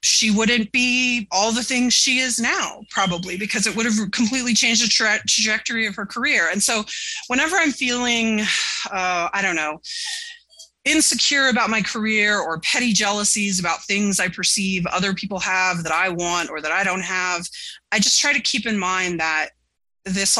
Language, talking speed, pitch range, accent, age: English, 180 wpm, 185-235 Hz, American, 30-49